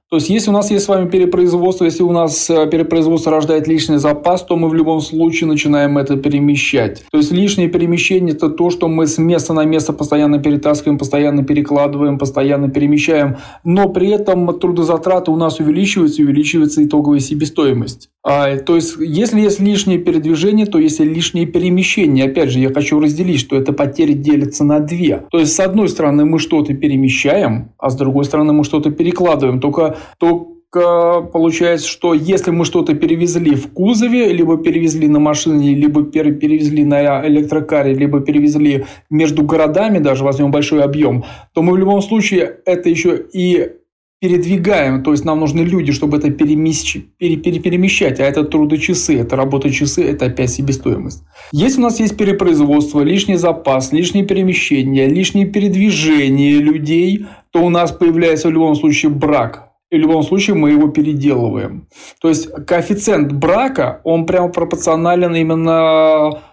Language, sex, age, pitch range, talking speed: Russian, male, 20-39, 150-175 Hz, 160 wpm